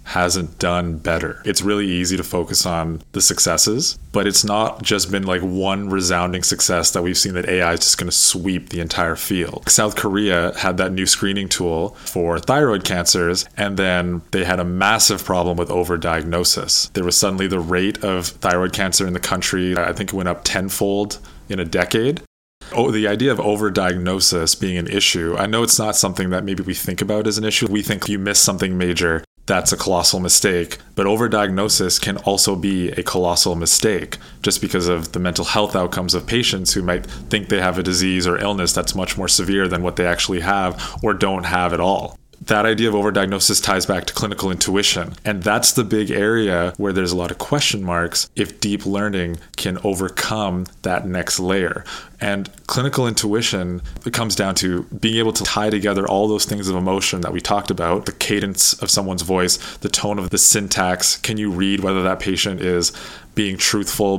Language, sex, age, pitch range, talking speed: English, male, 20-39, 90-100 Hz, 200 wpm